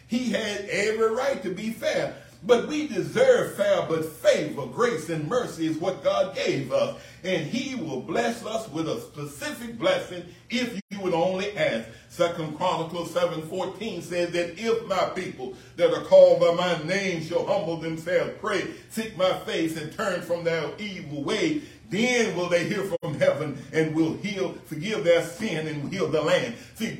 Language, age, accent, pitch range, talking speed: English, 60-79, American, 165-230 Hz, 175 wpm